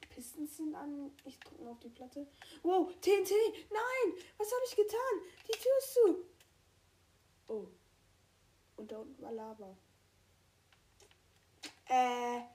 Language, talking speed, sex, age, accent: German, 130 wpm, female, 10-29, German